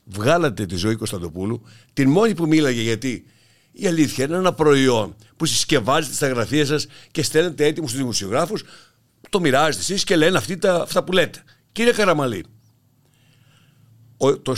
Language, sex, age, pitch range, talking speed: Greek, male, 60-79, 115-165 Hz, 150 wpm